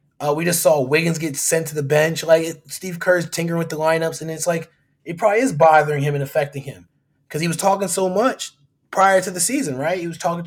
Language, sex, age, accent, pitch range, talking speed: English, male, 20-39, American, 150-205 Hz, 240 wpm